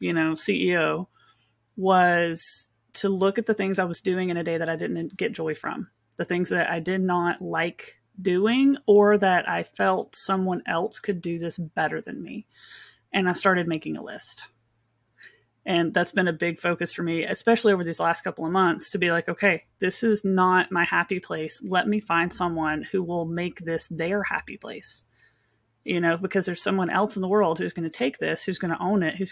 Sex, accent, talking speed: female, American, 210 wpm